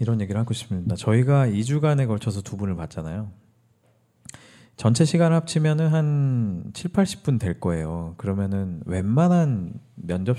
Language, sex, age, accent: Korean, male, 40-59, native